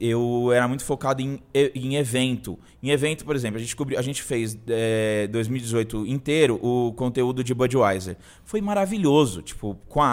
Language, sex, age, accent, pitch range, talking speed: Portuguese, male, 20-39, Brazilian, 120-180 Hz, 170 wpm